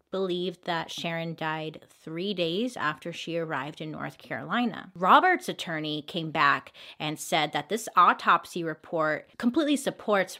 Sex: female